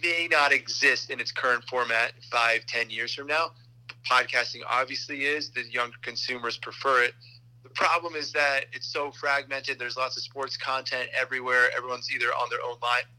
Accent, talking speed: American, 175 wpm